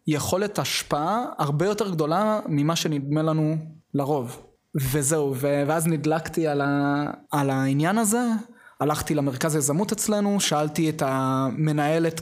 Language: Hebrew